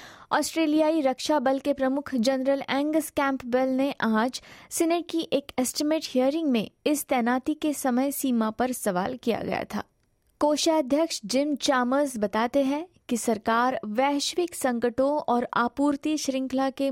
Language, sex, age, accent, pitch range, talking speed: Hindi, female, 20-39, native, 230-295 Hz, 140 wpm